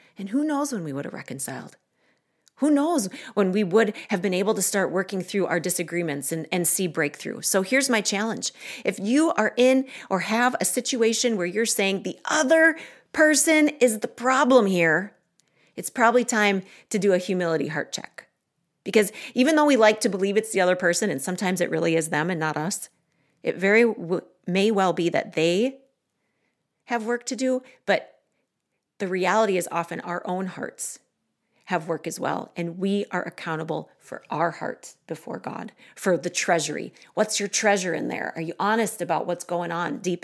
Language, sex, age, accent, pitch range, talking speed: English, female, 40-59, American, 175-235 Hz, 185 wpm